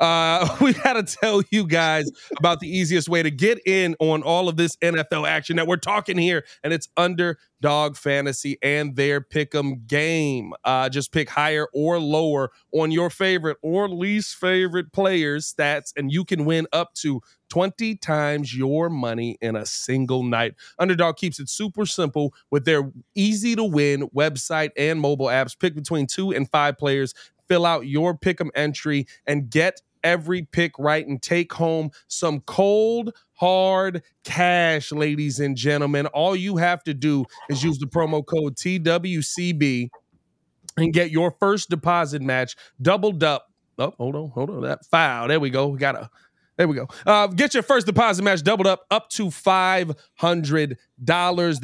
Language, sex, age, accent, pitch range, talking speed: English, male, 30-49, American, 145-180 Hz, 170 wpm